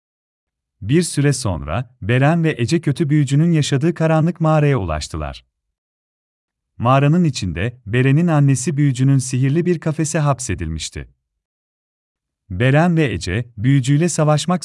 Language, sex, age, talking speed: Turkish, male, 40-59, 105 wpm